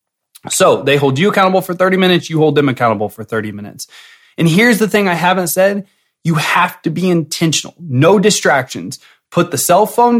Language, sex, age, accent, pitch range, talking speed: English, male, 20-39, American, 145-200 Hz, 195 wpm